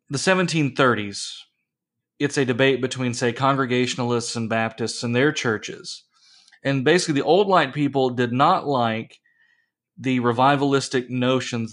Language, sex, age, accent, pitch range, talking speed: English, male, 30-49, American, 120-140 Hz, 130 wpm